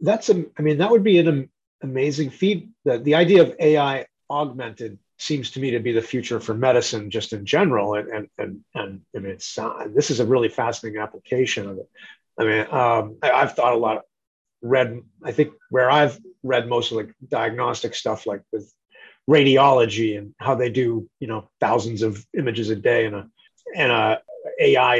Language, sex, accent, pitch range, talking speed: English, male, American, 115-150 Hz, 190 wpm